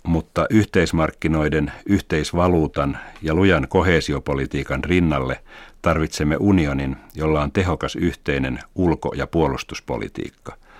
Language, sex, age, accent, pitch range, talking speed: Finnish, male, 60-79, native, 70-85 Hz, 90 wpm